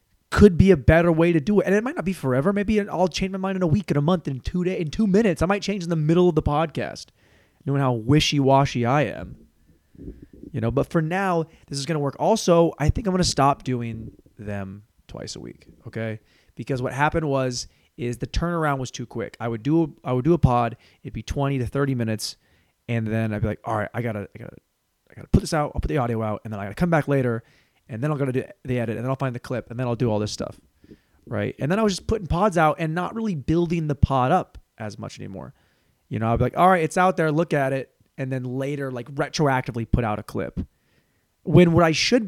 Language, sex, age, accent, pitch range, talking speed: English, male, 20-39, American, 115-165 Hz, 265 wpm